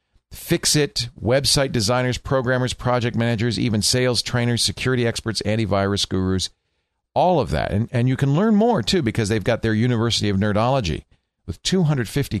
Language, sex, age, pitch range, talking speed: English, male, 50-69, 95-130 Hz, 160 wpm